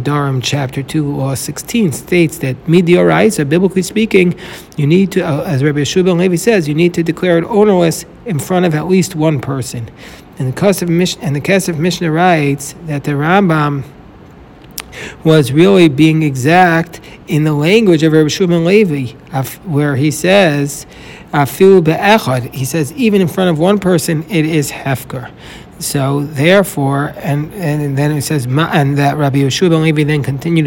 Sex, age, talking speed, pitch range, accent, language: male, 60-79, 170 wpm, 140-180 Hz, American, English